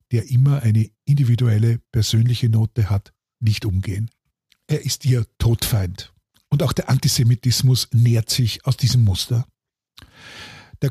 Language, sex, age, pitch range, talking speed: German, male, 50-69, 115-135 Hz, 125 wpm